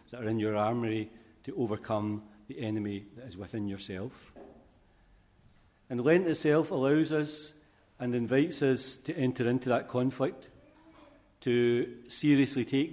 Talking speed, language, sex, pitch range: 135 wpm, English, male, 110-130 Hz